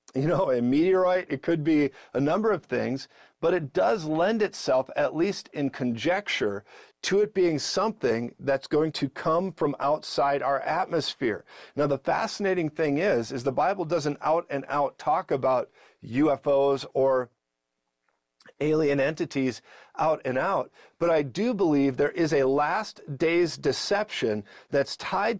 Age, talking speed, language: 50-69, 155 wpm, English